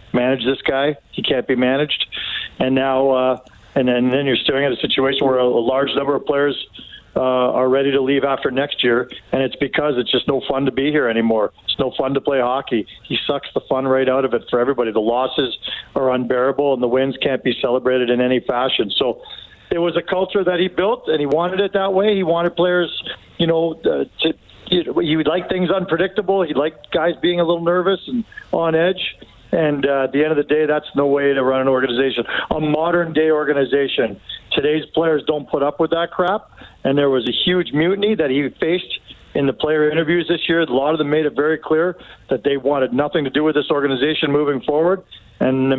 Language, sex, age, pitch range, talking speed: English, male, 50-69, 135-165 Hz, 225 wpm